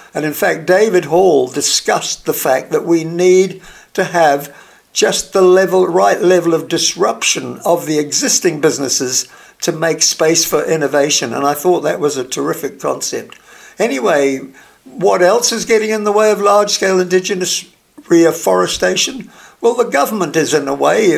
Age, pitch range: 60-79, 150-200 Hz